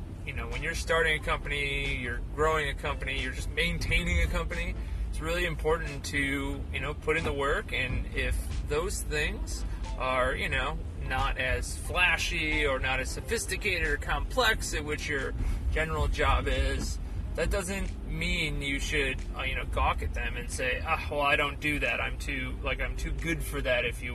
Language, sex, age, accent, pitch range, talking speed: English, male, 30-49, American, 80-130 Hz, 190 wpm